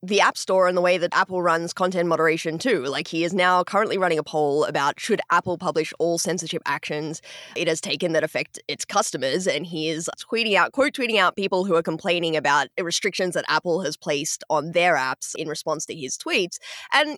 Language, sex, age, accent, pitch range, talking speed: English, female, 10-29, Australian, 155-205 Hz, 215 wpm